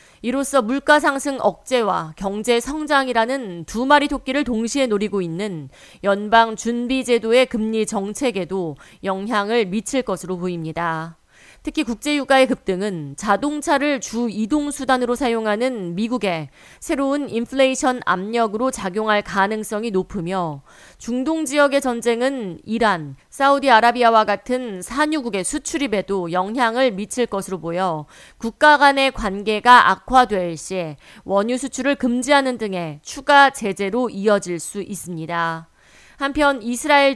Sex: female